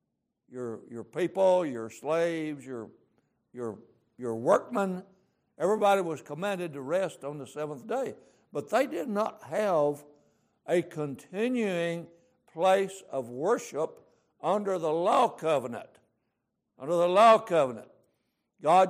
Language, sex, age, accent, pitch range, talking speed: English, male, 60-79, American, 145-205 Hz, 115 wpm